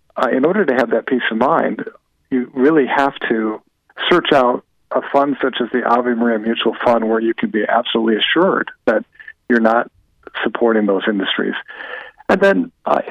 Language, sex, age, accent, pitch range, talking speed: English, male, 50-69, American, 115-135 Hz, 180 wpm